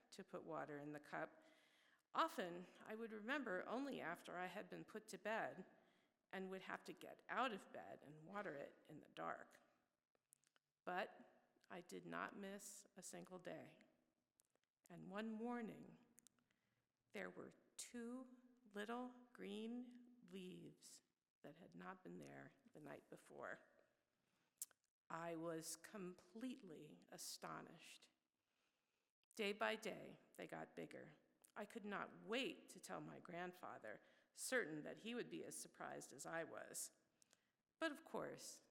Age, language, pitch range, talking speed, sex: 50-69, English, 180-245 Hz, 135 wpm, female